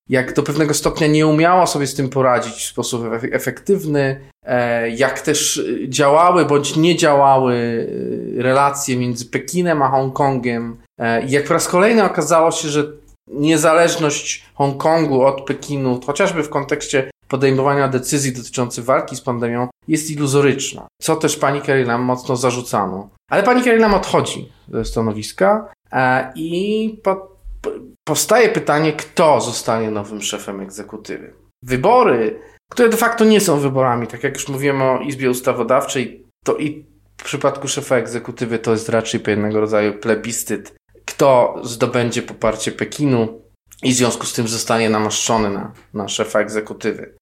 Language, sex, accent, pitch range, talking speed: Polish, male, native, 120-150 Hz, 140 wpm